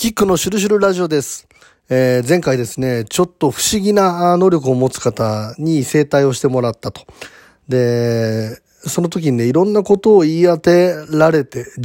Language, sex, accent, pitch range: Japanese, male, native, 120-175 Hz